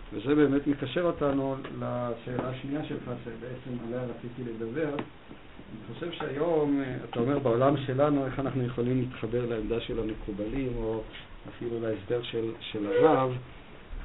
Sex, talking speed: male, 130 wpm